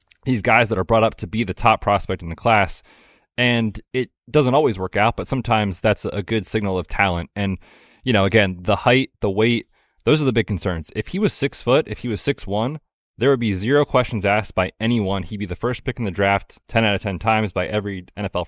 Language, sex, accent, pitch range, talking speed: English, male, American, 95-120 Hz, 240 wpm